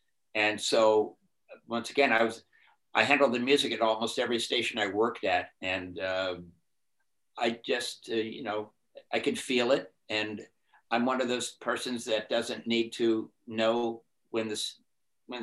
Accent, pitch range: American, 110-135 Hz